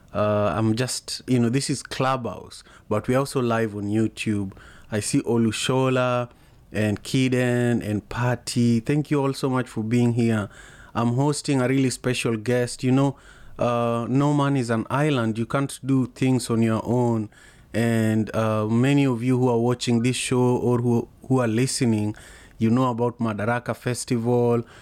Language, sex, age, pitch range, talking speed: English, male, 30-49, 115-130 Hz, 170 wpm